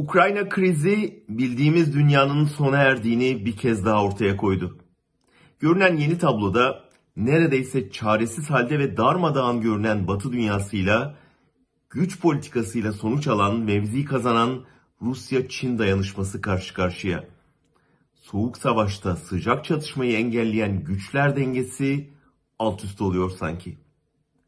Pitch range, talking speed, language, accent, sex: 100-145 Hz, 105 wpm, German, Turkish, male